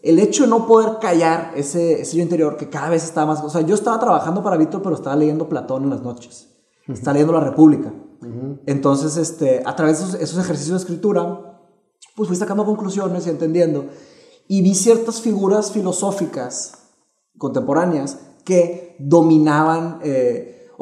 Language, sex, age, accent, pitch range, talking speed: English, male, 30-49, Mexican, 150-195 Hz, 160 wpm